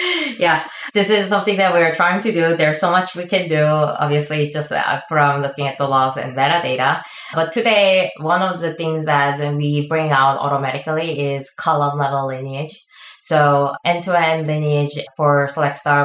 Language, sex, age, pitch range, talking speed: English, female, 20-39, 135-160 Hz, 160 wpm